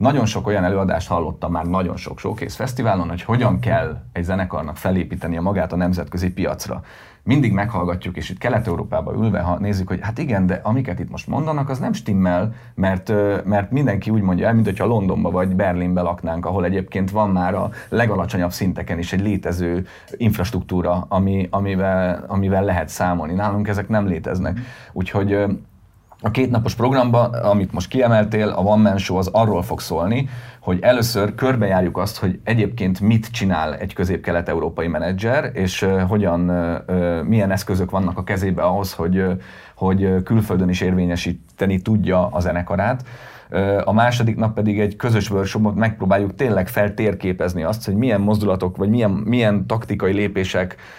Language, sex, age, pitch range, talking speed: Hungarian, male, 30-49, 90-110 Hz, 155 wpm